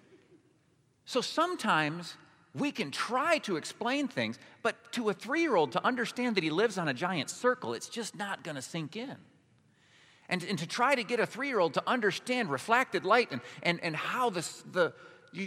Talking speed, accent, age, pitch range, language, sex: 180 wpm, American, 40-59, 145-240 Hz, English, male